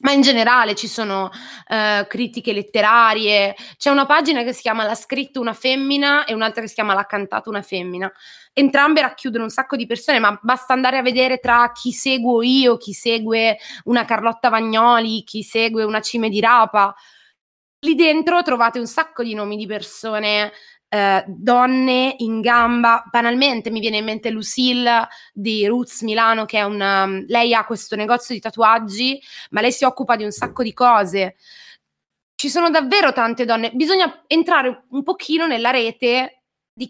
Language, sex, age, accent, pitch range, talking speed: Italian, female, 20-39, native, 210-260 Hz, 170 wpm